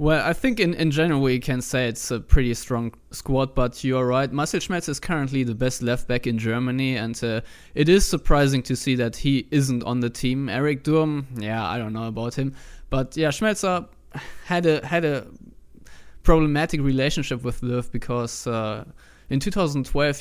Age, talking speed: 20-39, 185 wpm